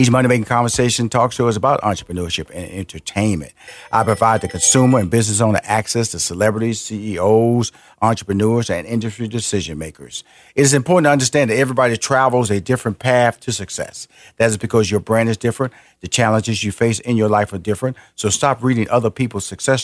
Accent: American